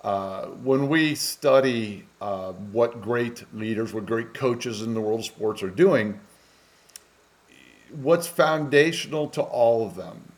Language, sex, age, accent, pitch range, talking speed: English, male, 50-69, American, 110-140 Hz, 140 wpm